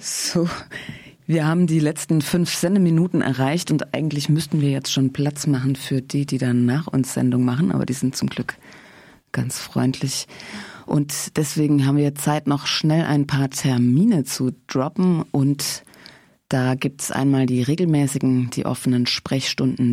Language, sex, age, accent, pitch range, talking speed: German, female, 30-49, German, 125-150 Hz, 160 wpm